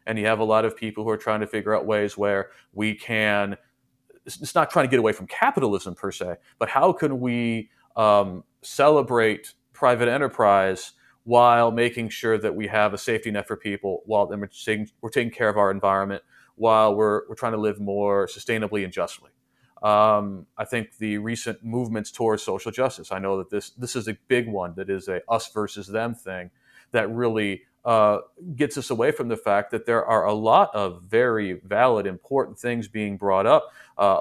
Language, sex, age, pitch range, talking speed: English, male, 30-49, 100-120 Hz, 195 wpm